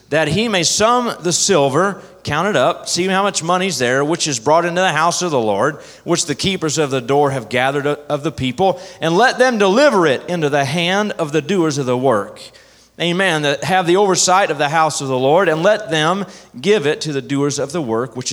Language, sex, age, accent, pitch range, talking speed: English, male, 30-49, American, 135-195 Hz, 235 wpm